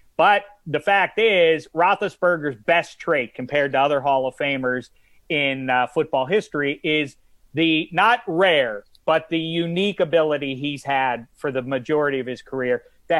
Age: 40-59